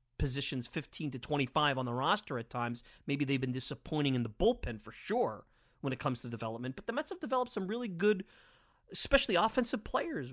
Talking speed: 200 wpm